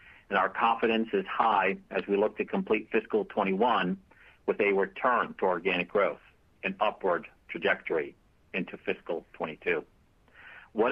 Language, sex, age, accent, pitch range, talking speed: English, male, 50-69, American, 105-120 Hz, 135 wpm